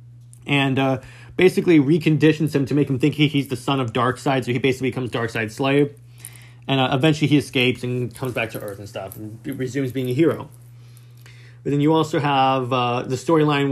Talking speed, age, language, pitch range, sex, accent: 200 wpm, 30-49, English, 120-145 Hz, male, American